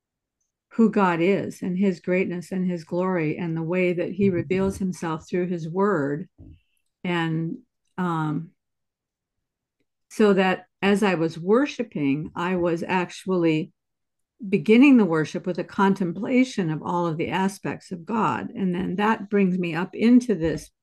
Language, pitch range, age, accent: English, 175-215 Hz, 60-79, American